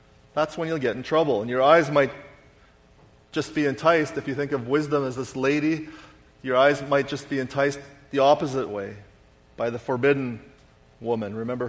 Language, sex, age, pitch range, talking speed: English, male, 30-49, 120-155 Hz, 180 wpm